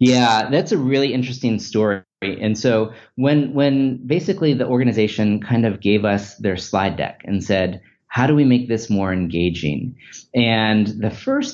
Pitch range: 100-120 Hz